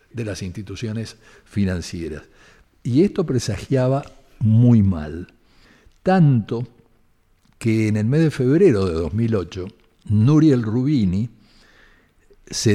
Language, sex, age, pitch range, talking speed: Spanish, male, 60-79, 95-135 Hz, 100 wpm